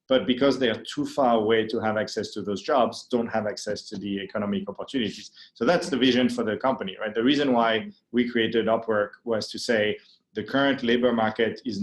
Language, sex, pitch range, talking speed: English, male, 110-125 Hz, 215 wpm